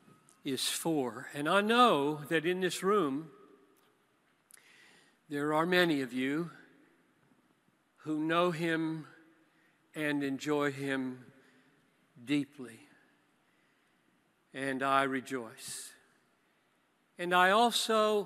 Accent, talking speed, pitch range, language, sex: American, 90 wpm, 140-190 Hz, English, male